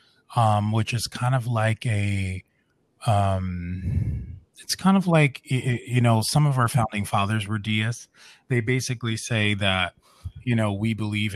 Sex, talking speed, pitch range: male, 155 wpm, 95-110 Hz